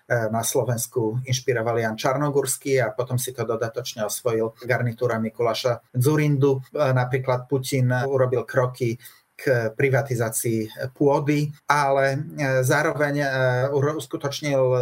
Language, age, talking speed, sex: Slovak, 30-49, 95 wpm, male